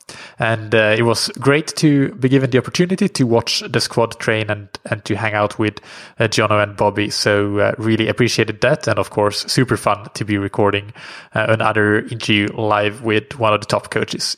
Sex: male